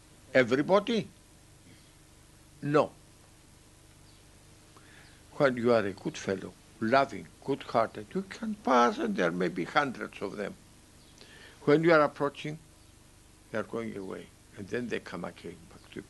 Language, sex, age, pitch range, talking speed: English, male, 60-79, 105-135 Hz, 135 wpm